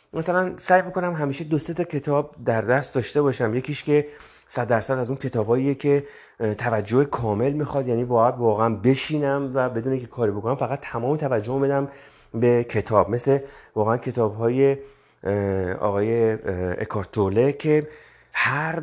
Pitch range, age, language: 110-140 Hz, 30-49, Persian